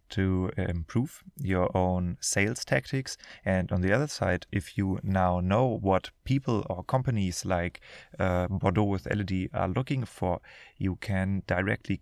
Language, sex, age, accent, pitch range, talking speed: English, male, 30-49, German, 95-115 Hz, 150 wpm